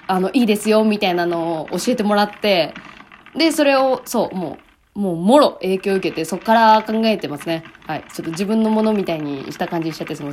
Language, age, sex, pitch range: Japanese, 20-39, female, 190-295 Hz